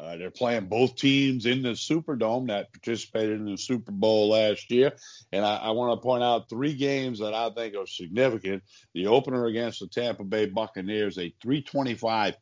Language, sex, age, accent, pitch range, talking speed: English, male, 50-69, American, 100-120 Hz, 185 wpm